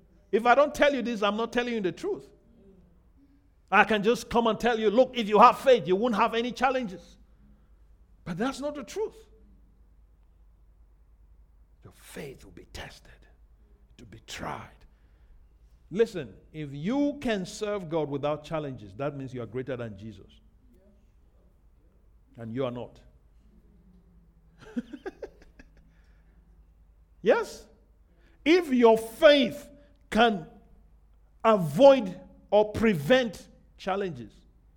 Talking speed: 120 wpm